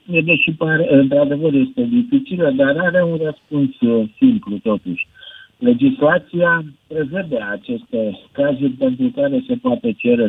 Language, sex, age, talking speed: Romanian, male, 50-69, 115 wpm